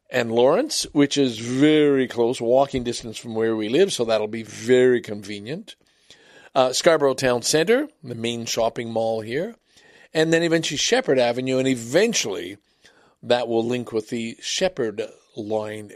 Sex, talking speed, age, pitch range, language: male, 150 wpm, 50-69, 110-145 Hz, English